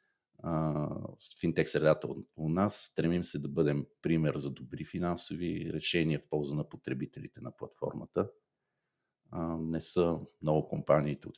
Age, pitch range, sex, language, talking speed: 50-69, 75-90 Hz, male, Bulgarian, 140 wpm